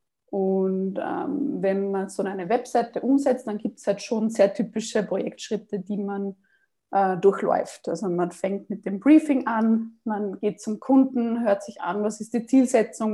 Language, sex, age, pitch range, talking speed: German, female, 20-39, 200-240 Hz, 175 wpm